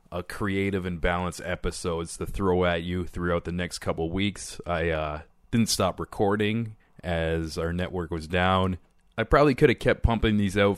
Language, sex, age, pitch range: English, male, 20-39, 90-105 Hz